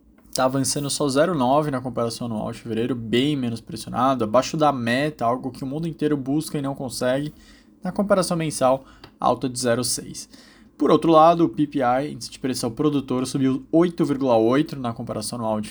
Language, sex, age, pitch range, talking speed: Portuguese, male, 20-39, 115-145 Hz, 170 wpm